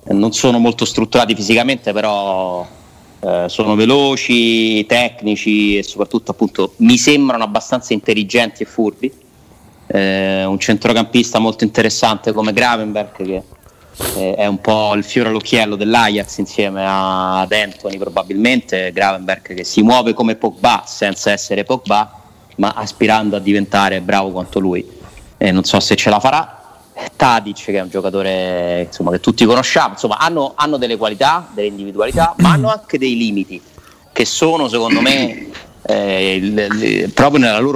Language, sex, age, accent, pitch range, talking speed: Italian, male, 30-49, native, 100-120 Hz, 140 wpm